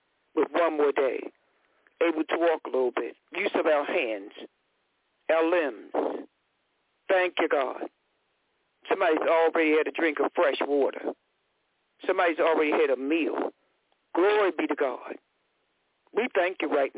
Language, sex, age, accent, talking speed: English, male, 60-79, American, 140 wpm